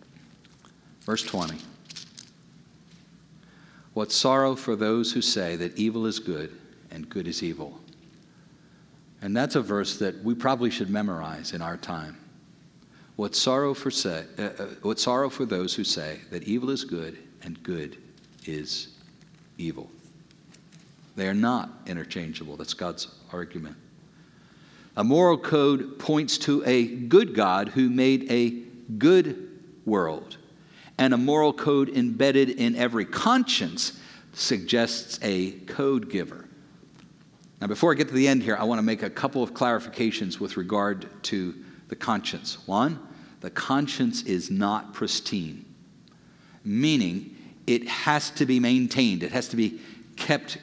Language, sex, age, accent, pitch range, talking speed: English, male, 50-69, American, 105-145 Hz, 140 wpm